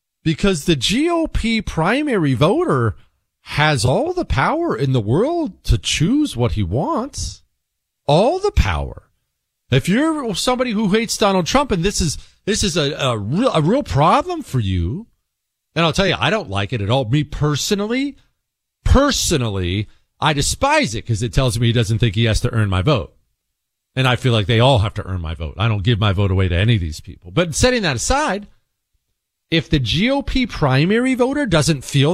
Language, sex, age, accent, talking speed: English, male, 40-59, American, 190 wpm